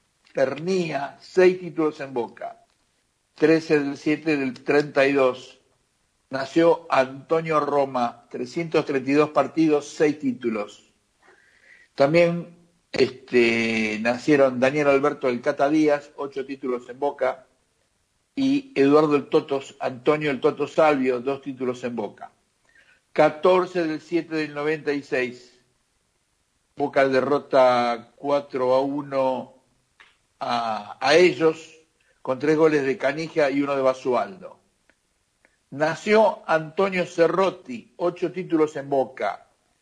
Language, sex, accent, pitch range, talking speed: Spanish, male, Argentinian, 135-165 Hz, 105 wpm